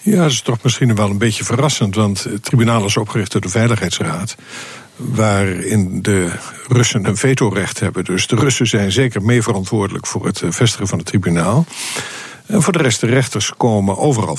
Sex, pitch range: male, 100-125 Hz